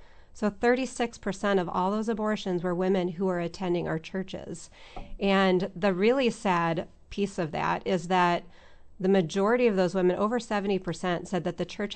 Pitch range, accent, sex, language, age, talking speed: 175-210 Hz, American, female, English, 30-49, 165 wpm